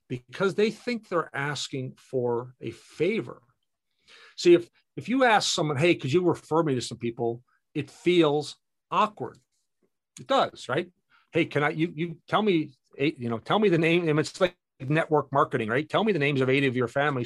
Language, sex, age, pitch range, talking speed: English, male, 50-69, 120-165 Hz, 195 wpm